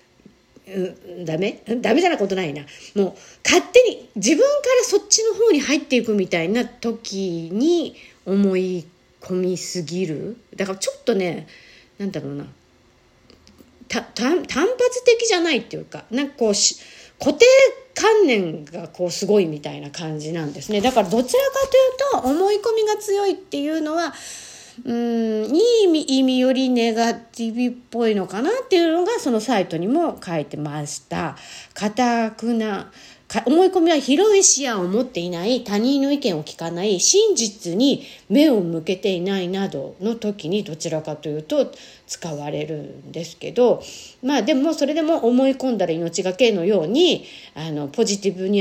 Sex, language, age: female, Japanese, 50-69